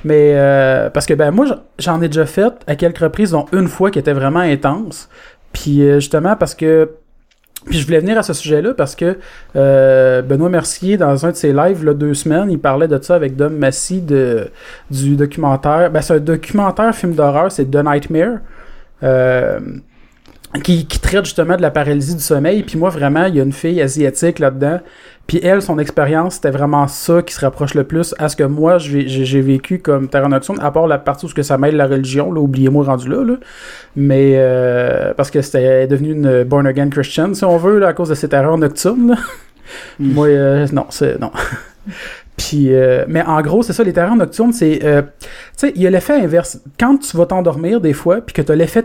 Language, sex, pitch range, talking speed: French, male, 145-180 Hz, 220 wpm